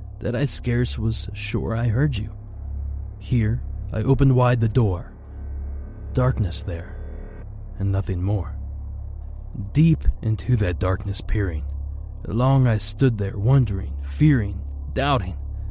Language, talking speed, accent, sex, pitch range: English, 120 wpm, American, male, 80-120 Hz